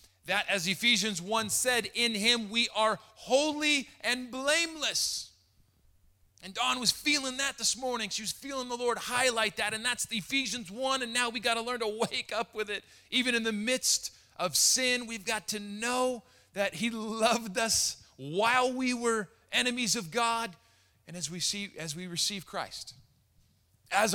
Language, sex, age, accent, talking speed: English, male, 30-49, American, 175 wpm